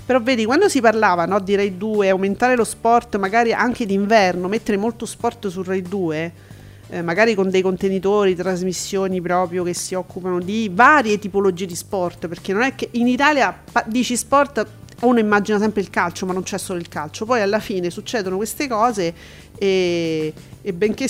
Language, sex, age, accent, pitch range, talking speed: Italian, female, 40-59, native, 180-230 Hz, 180 wpm